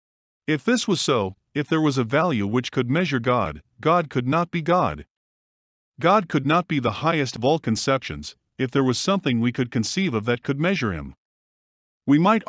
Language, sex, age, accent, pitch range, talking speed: English, male, 50-69, American, 120-170 Hz, 195 wpm